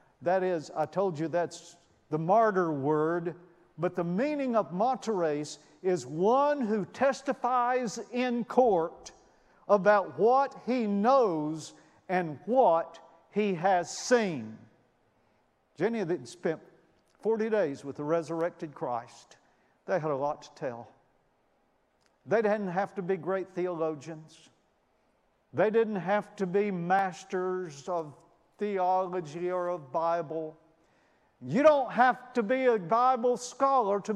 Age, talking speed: 50-69, 125 wpm